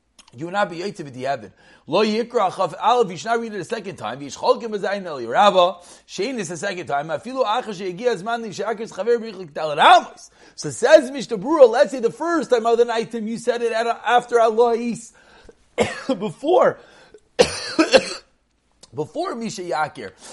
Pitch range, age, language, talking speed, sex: 180-240 Hz, 30-49, English, 145 wpm, male